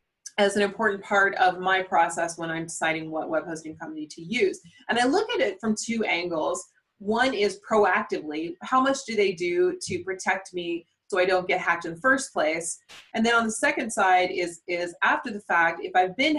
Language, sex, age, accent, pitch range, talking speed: English, female, 20-39, American, 175-225 Hz, 210 wpm